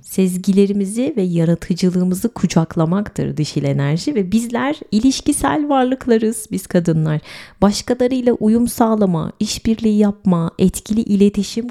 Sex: female